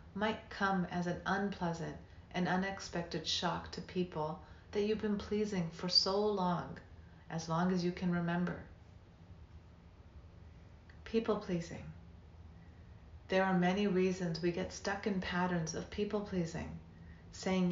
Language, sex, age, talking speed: English, female, 40-59, 120 wpm